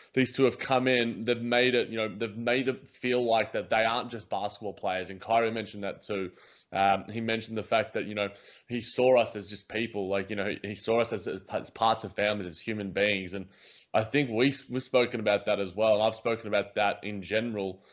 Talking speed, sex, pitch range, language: 235 wpm, male, 105-125 Hz, English